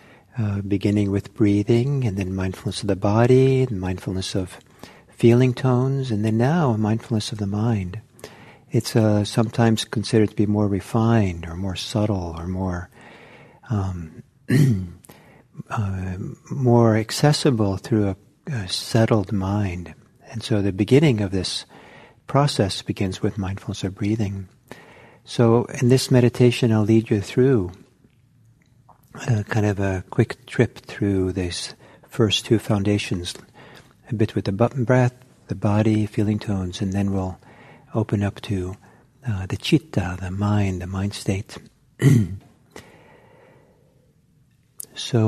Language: English